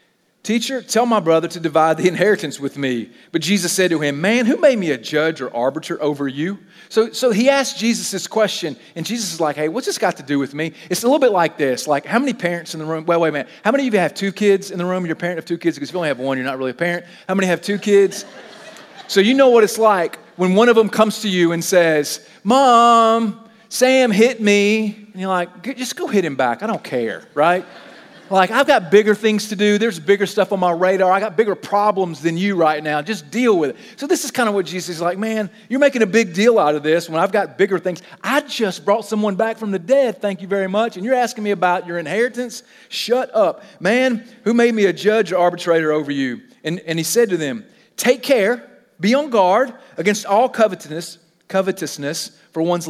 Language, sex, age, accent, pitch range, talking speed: English, male, 40-59, American, 170-225 Hz, 250 wpm